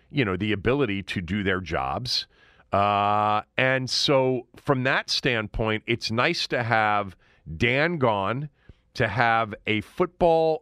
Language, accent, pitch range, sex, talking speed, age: English, American, 95-130 Hz, male, 135 wpm, 40-59